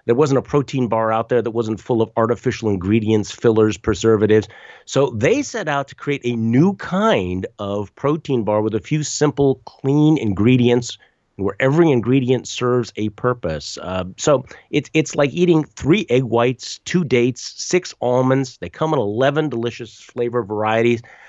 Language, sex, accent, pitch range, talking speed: English, male, American, 100-130 Hz, 165 wpm